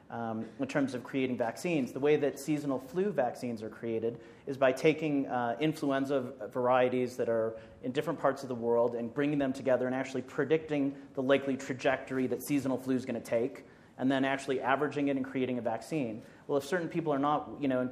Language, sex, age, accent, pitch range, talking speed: English, male, 30-49, American, 120-140 Hz, 210 wpm